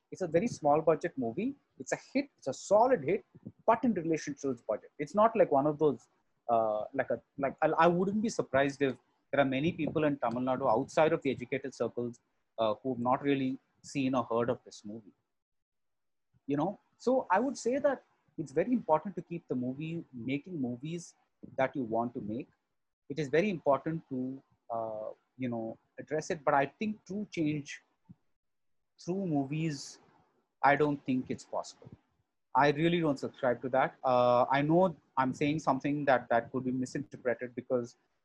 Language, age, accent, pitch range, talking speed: English, 30-49, Indian, 130-160 Hz, 185 wpm